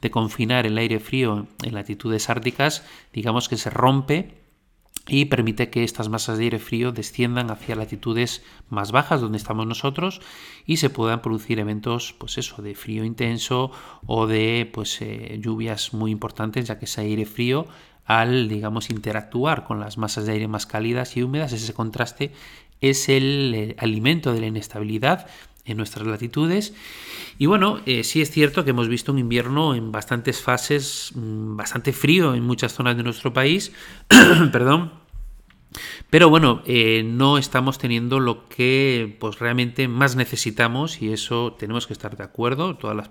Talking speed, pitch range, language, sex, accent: 170 wpm, 110-135 Hz, Spanish, male, Spanish